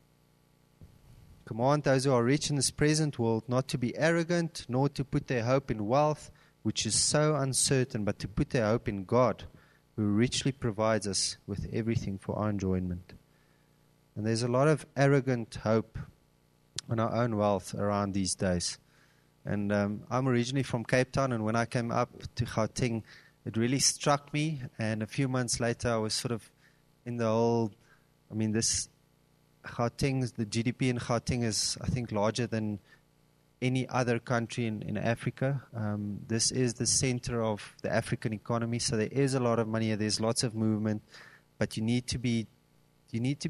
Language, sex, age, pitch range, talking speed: English, male, 30-49, 110-140 Hz, 175 wpm